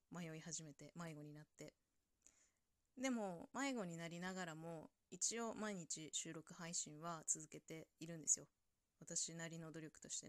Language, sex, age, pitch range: Japanese, female, 20-39, 155-190 Hz